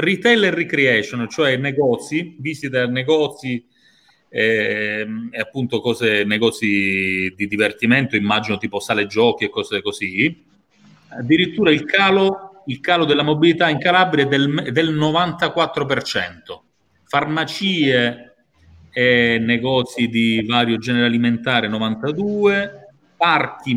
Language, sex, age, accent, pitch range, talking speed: Italian, male, 30-49, native, 120-170 Hz, 115 wpm